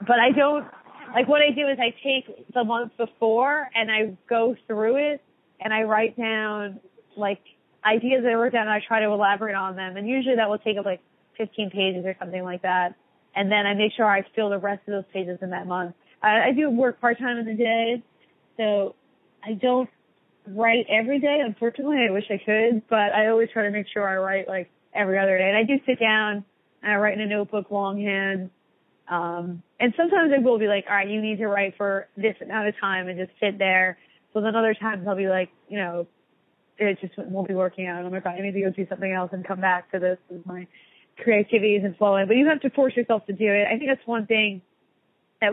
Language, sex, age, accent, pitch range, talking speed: English, female, 20-39, American, 195-230 Hz, 235 wpm